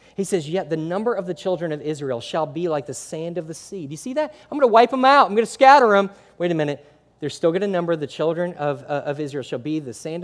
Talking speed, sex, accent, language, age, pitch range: 305 wpm, male, American, English, 40-59, 145-195 Hz